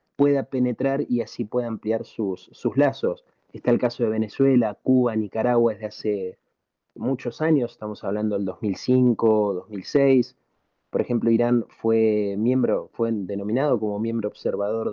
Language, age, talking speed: Spanish, 30-49, 135 wpm